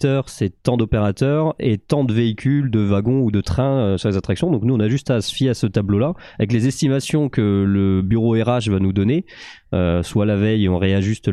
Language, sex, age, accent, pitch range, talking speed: French, male, 20-39, French, 95-125 Hz, 235 wpm